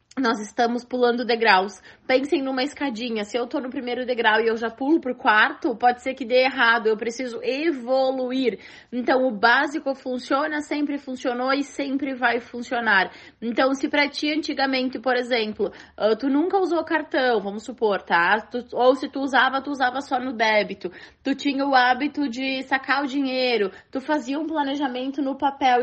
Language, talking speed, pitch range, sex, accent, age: Portuguese, 170 wpm, 240-285 Hz, female, Brazilian, 20-39